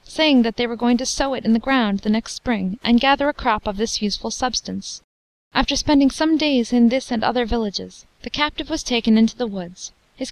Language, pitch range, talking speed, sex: English, 205-255 Hz, 225 wpm, female